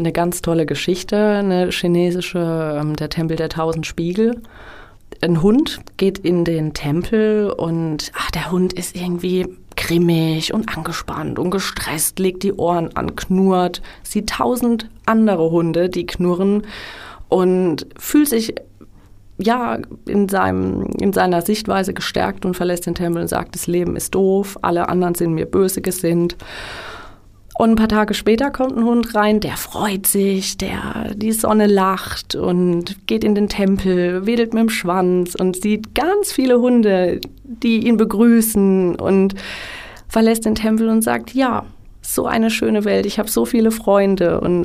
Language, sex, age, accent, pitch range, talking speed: German, female, 30-49, German, 170-210 Hz, 155 wpm